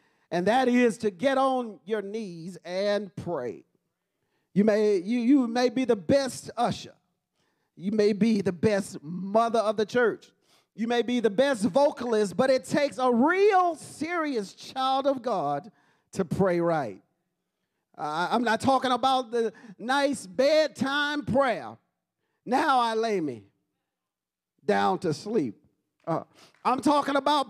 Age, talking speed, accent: 40-59, 145 wpm, American